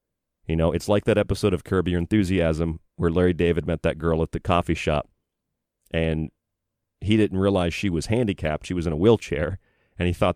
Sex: male